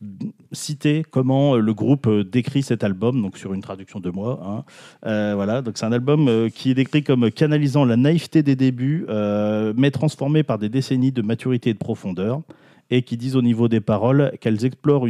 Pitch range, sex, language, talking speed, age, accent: 105-135 Hz, male, French, 195 wpm, 30-49, French